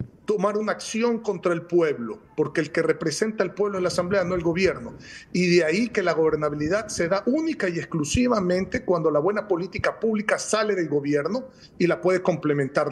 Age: 40-59